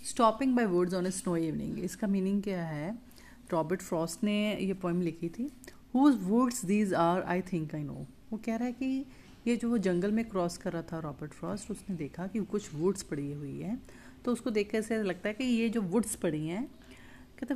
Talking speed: 215 wpm